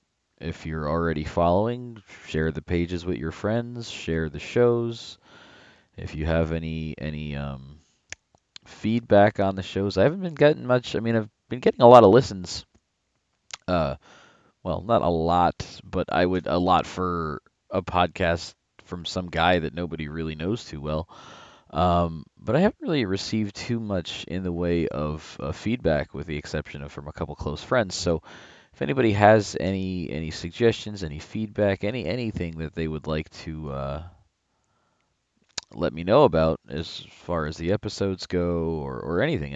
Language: English